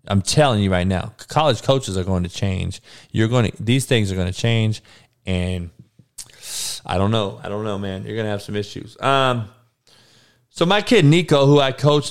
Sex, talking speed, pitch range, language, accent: male, 210 wpm, 105-135 Hz, English, American